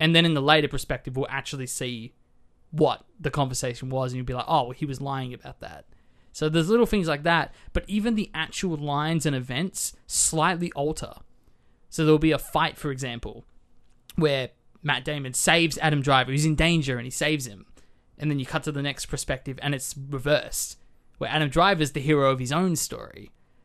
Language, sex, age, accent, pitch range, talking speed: English, male, 20-39, Australian, 130-155 Hz, 205 wpm